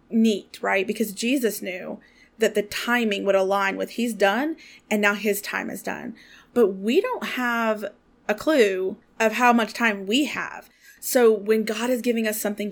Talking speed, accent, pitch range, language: 180 wpm, American, 195-235 Hz, English